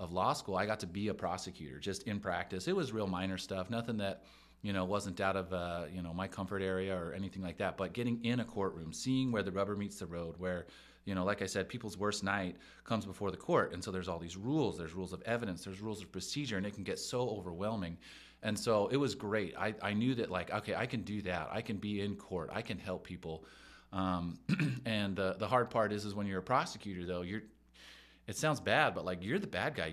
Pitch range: 95-115 Hz